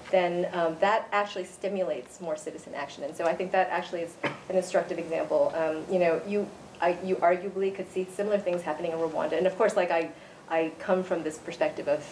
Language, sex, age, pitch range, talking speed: English, female, 30-49, 170-200 Hz, 215 wpm